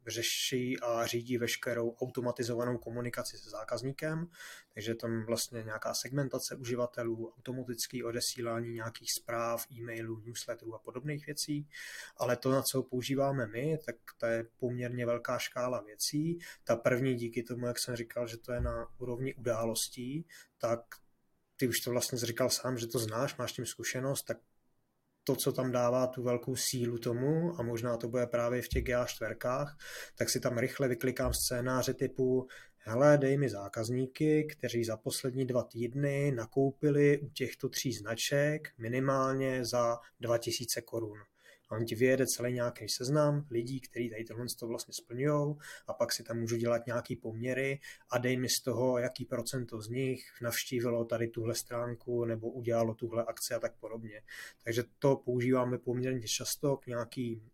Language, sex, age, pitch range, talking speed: Czech, male, 20-39, 115-130 Hz, 160 wpm